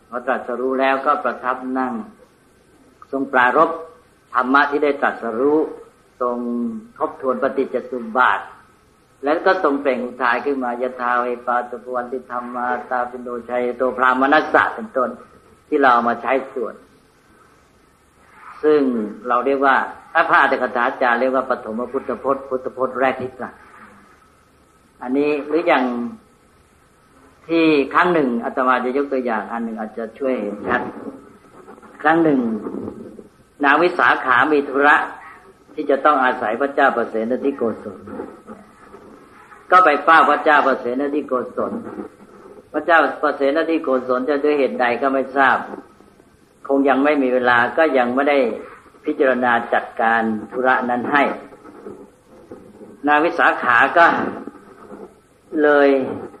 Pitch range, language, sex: 125-145 Hz, English, female